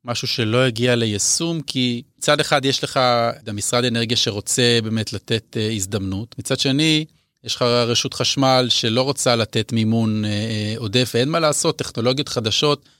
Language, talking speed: Hebrew, 155 wpm